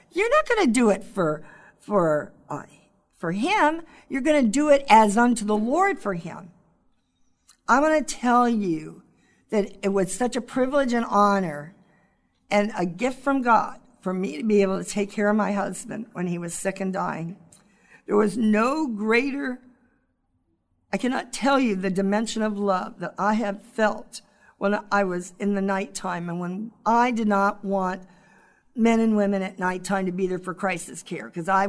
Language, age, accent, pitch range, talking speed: English, 50-69, American, 185-230 Hz, 185 wpm